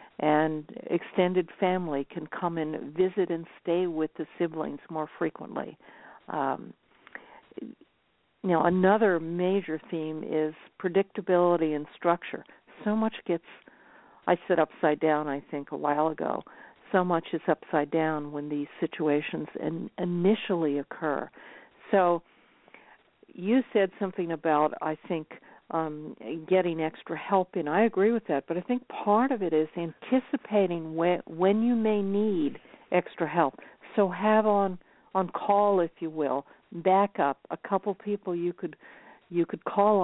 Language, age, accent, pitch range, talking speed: English, 50-69, American, 155-195 Hz, 140 wpm